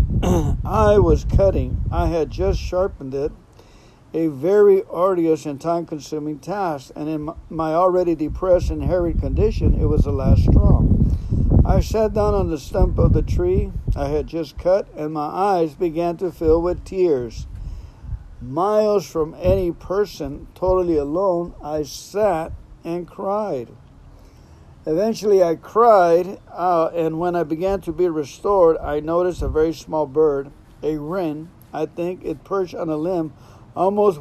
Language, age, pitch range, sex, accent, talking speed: English, 60-79, 150-185 Hz, male, American, 150 wpm